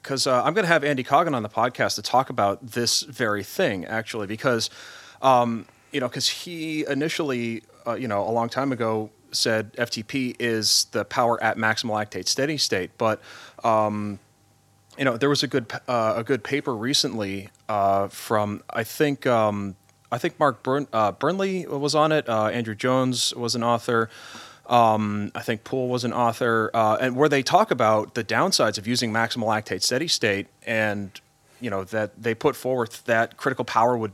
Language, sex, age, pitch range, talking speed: English, male, 30-49, 110-140 Hz, 185 wpm